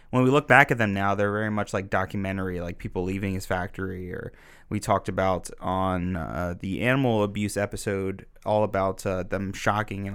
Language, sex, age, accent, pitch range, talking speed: English, male, 20-39, American, 95-115 Hz, 195 wpm